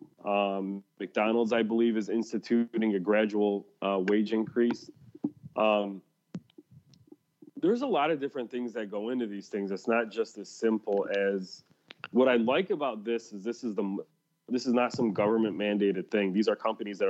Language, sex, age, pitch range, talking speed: English, male, 30-49, 105-165 Hz, 170 wpm